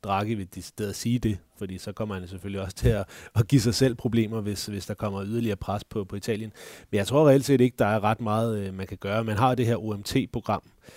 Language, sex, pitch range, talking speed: Danish, male, 95-110 Hz, 250 wpm